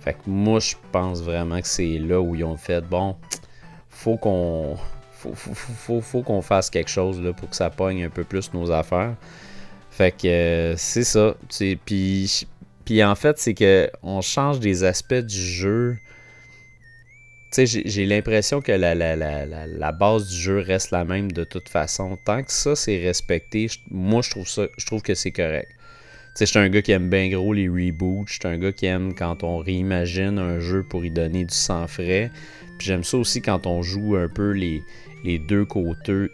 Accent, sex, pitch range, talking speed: Canadian, male, 90-110 Hz, 210 wpm